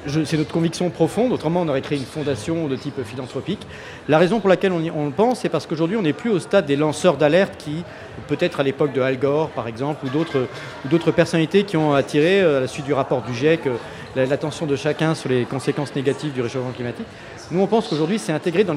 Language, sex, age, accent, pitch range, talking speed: French, male, 40-59, French, 140-180 Hz, 235 wpm